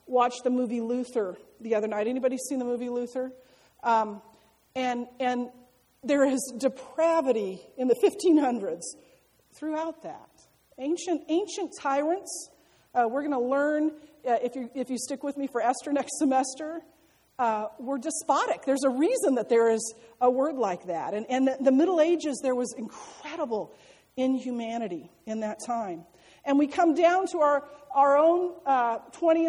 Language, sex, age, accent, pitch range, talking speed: English, female, 40-59, American, 220-290 Hz, 160 wpm